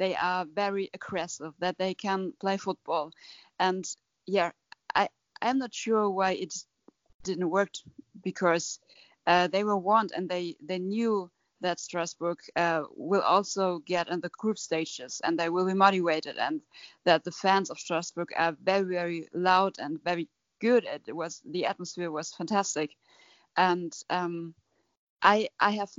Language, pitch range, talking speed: English, 175-200 Hz, 155 wpm